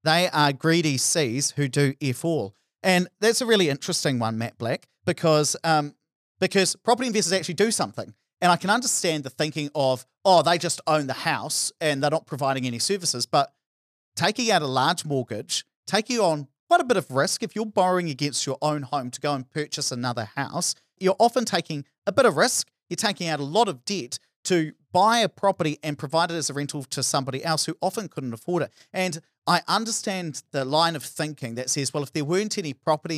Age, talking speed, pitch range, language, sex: 40-59, 210 wpm, 140-185 Hz, English, male